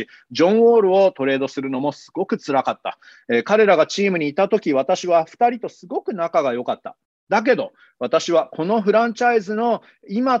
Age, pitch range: 30-49, 160-225 Hz